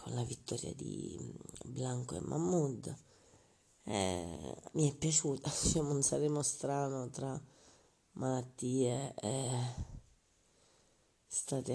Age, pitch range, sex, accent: 30-49, 125-150 Hz, female, native